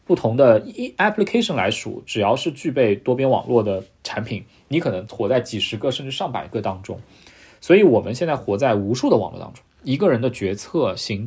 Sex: male